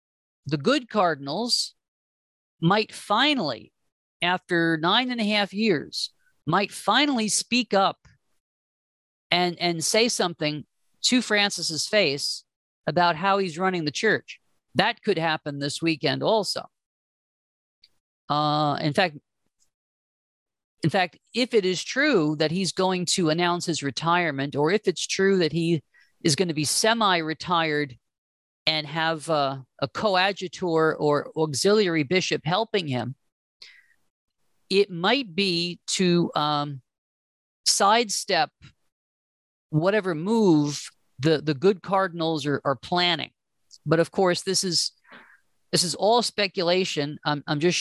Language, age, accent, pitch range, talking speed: English, 50-69, American, 150-195 Hz, 125 wpm